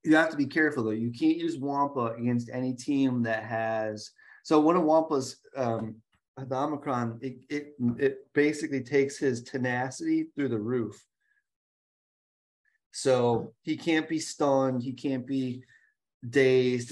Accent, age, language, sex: American, 30-49, English, male